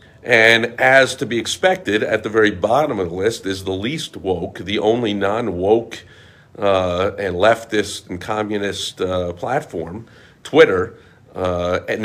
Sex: male